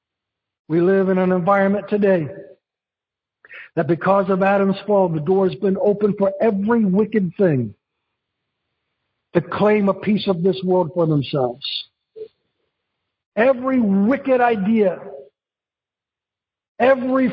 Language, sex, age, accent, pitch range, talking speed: English, male, 60-79, American, 185-245 Hz, 115 wpm